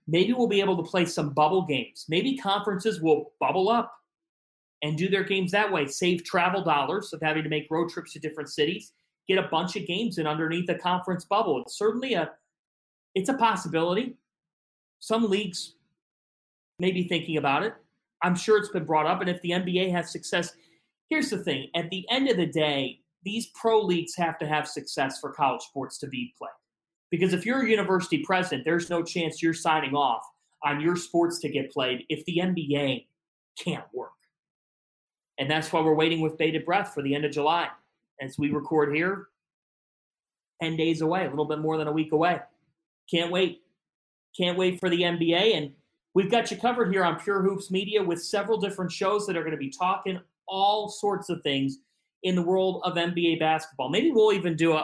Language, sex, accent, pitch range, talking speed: English, male, American, 155-190 Hz, 200 wpm